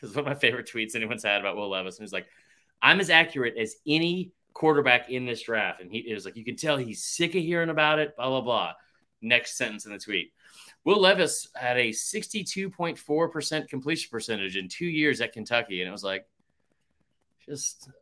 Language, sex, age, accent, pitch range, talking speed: English, male, 30-49, American, 110-160 Hz, 210 wpm